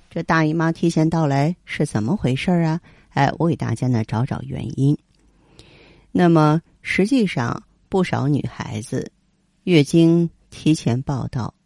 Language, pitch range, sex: Chinese, 125-170 Hz, female